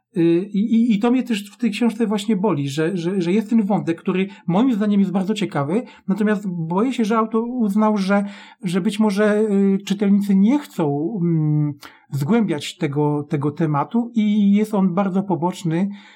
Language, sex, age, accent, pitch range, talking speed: Polish, male, 40-59, native, 165-210 Hz, 165 wpm